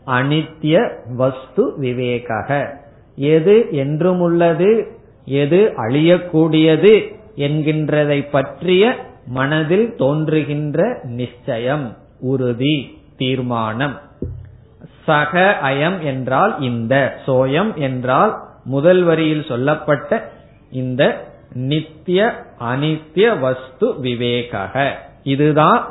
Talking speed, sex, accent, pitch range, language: 70 wpm, male, native, 130-165 Hz, Tamil